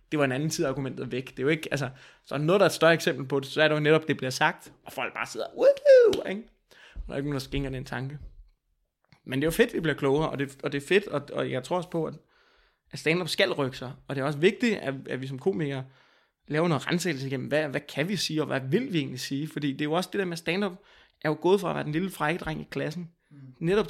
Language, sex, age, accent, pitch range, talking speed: Danish, male, 20-39, native, 145-180 Hz, 290 wpm